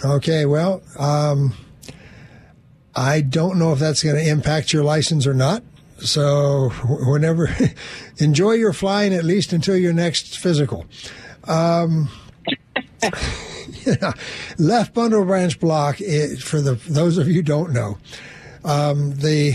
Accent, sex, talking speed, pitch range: American, male, 130 wpm, 135-160 Hz